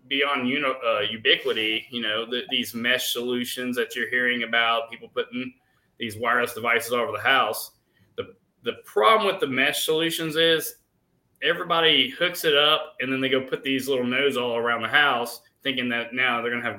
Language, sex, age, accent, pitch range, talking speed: English, male, 20-39, American, 125-150 Hz, 195 wpm